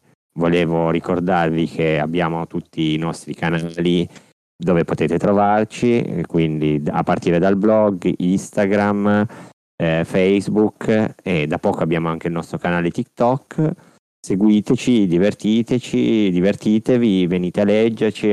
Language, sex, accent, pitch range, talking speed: Italian, male, native, 85-105 Hz, 115 wpm